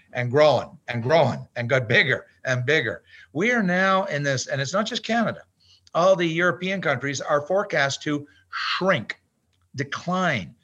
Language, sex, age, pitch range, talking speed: English, male, 50-69, 135-180 Hz, 160 wpm